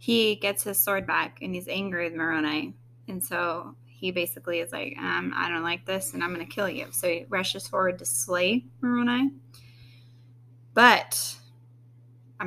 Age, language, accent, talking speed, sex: 20-39, English, American, 175 wpm, female